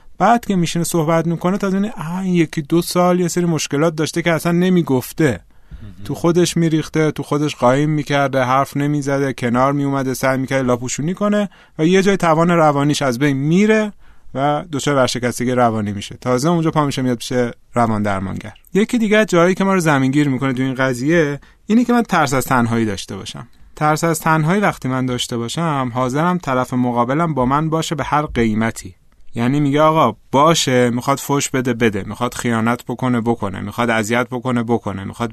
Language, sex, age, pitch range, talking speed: Persian, male, 30-49, 120-170 Hz, 180 wpm